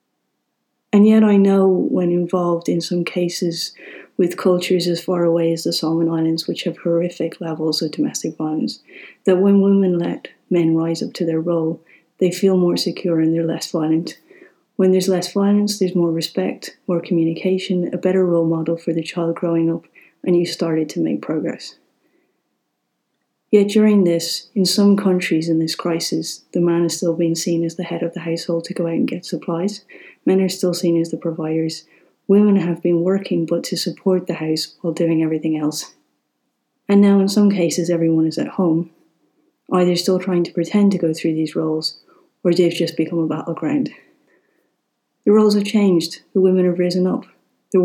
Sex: female